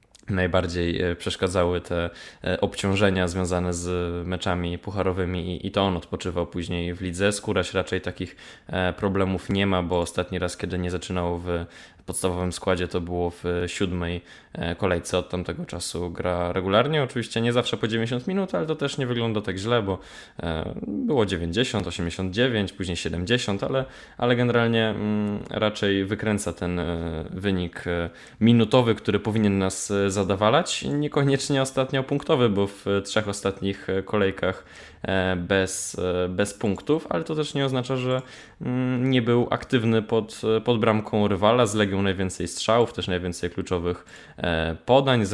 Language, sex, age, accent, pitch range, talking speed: Polish, male, 20-39, native, 90-115 Hz, 140 wpm